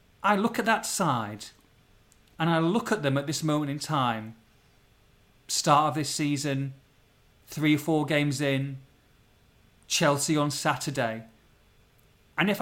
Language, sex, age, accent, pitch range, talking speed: English, male, 30-49, British, 120-175 Hz, 140 wpm